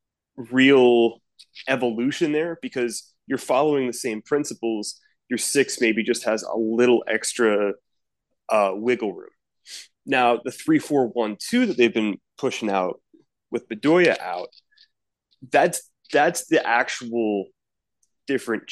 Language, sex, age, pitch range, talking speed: English, male, 30-49, 110-140 Hz, 125 wpm